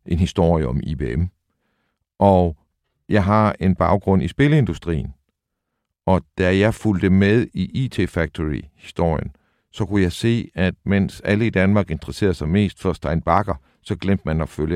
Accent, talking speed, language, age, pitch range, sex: native, 155 wpm, Danish, 60-79, 80-110 Hz, male